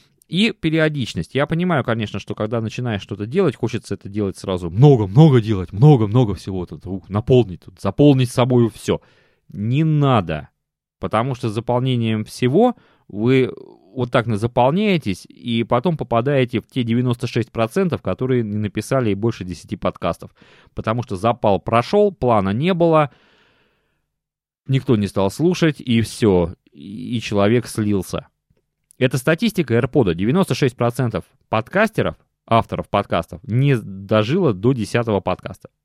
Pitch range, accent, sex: 105-145 Hz, native, male